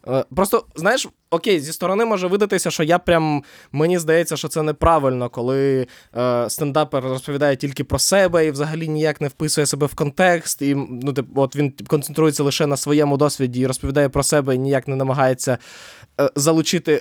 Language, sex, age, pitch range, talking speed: Ukrainian, male, 20-39, 135-165 Hz, 175 wpm